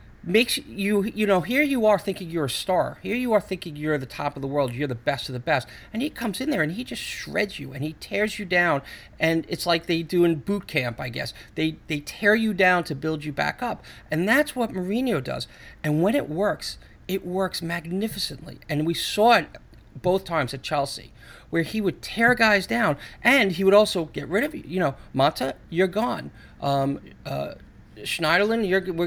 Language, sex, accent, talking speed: English, male, American, 220 wpm